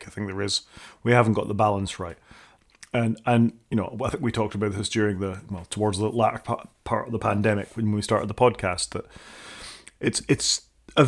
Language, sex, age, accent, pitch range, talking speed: English, male, 30-49, British, 100-110 Hz, 210 wpm